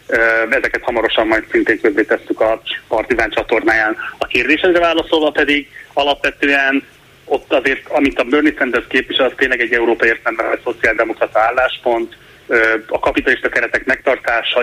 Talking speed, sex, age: 135 wpm, male, 30-49